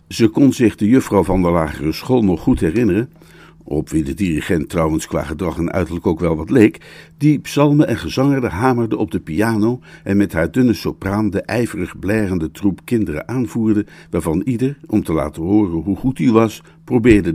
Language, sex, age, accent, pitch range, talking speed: Dutch, male, 60-79, Dutch, 95-130 Hz, 190 wpm